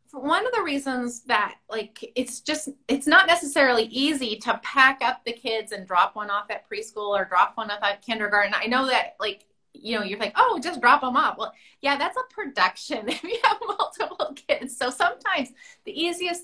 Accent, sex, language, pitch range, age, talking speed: American, female, English, 205-275 Hz, 30-49, 205 wpm